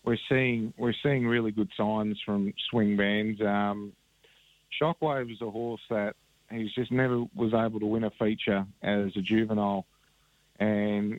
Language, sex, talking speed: English, male, 155 wpm